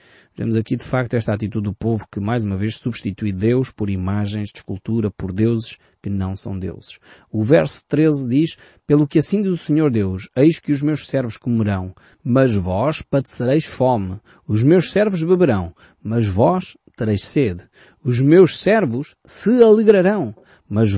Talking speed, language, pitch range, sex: 170 wpm, Portuguese, 105-140 Hz, male